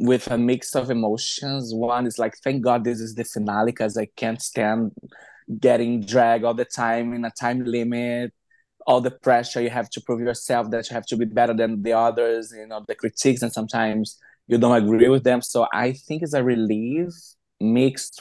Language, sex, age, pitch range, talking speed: English, male, 20-39, 110-125 Hz, 205 wpm